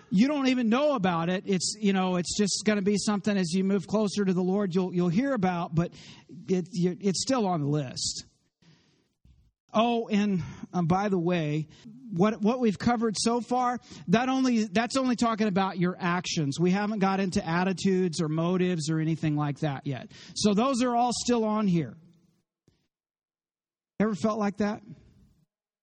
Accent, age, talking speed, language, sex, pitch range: American, 40-59, 175 wpm, English, male, 165-210 Hz